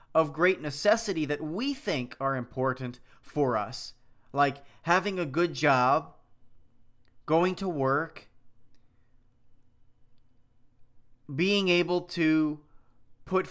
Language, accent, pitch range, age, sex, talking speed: English, American, 125-185 Hz, 30-49, male, 100 wpm